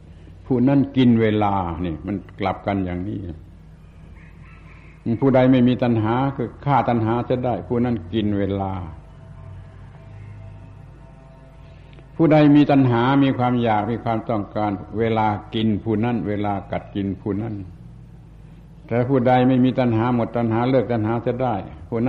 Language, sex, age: Thai, male, 60-79